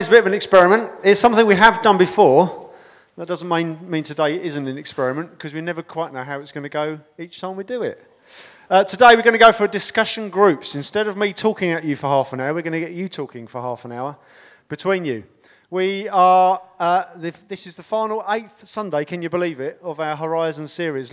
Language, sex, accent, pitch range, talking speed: English, male, British, 145-180 Hz, 235 wpm